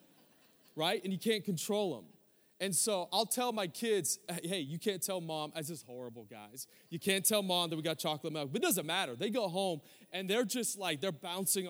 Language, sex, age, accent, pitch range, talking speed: English, male, 30-49, American, 170-230 Hz, 220 wpm